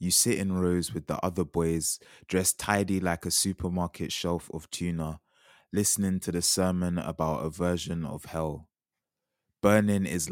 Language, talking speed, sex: English, 155 wpm, male